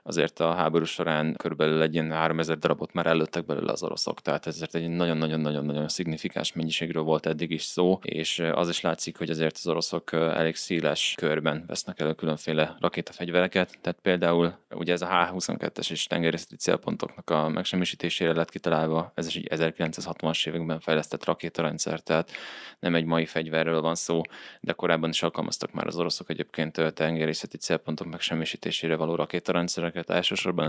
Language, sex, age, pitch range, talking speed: Hungarian, male, 20-39, 80-85 Hz, 155 wpm